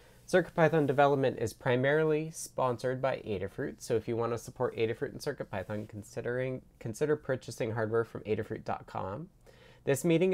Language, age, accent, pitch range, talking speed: English, 20-39, American, 110-145 Hz, 135 wpm